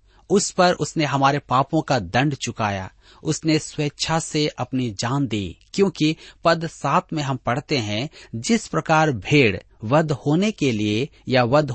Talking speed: 155 wpm